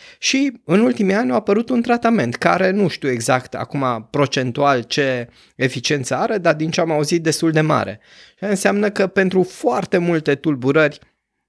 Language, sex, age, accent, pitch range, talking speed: Romanian, male, 20-39, native, 125-160 Hz, 165 wpm